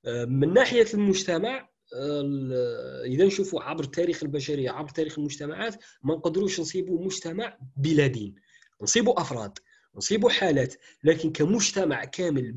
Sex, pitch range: male, 130-185 Hz